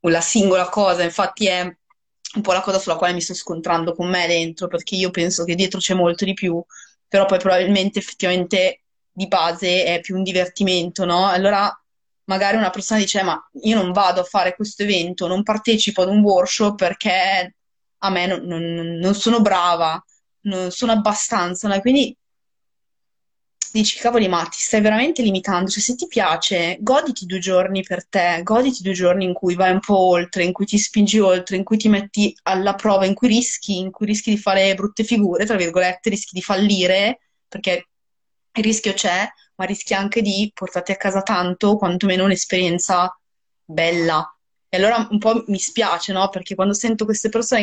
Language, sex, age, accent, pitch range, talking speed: Italian, female, 20-39, native, 180-215 Hz, 185 wpm